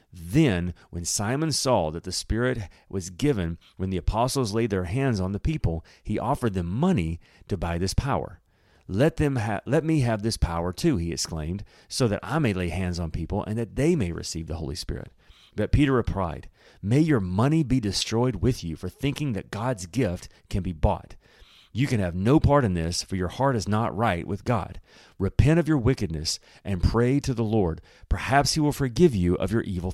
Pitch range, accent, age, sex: 90-125 Hz, American, 40-59, male